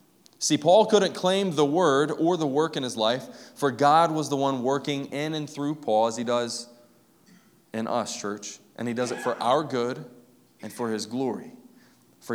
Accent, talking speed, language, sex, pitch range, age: American, 195 wpm, English, male, 120-160 Hz, 20-39